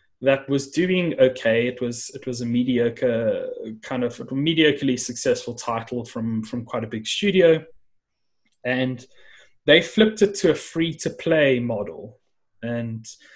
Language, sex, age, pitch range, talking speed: English, male, 20-39, 120-150 Hz, 150 wpm